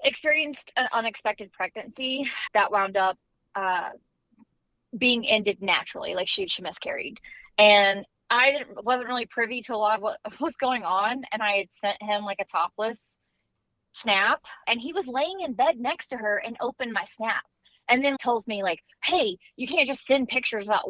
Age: 20-39